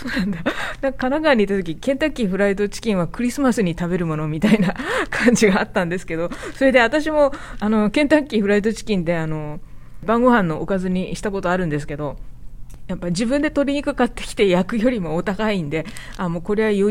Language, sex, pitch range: Japanese, female, 155-235 Hz